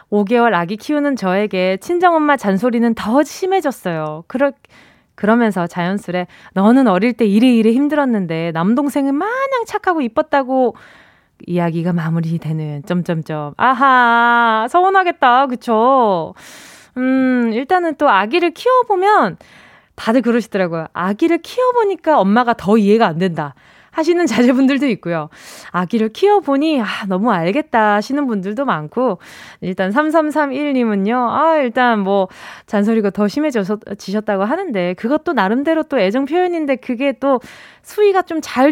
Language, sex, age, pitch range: Korean, female, 20-39, 195-285 Hz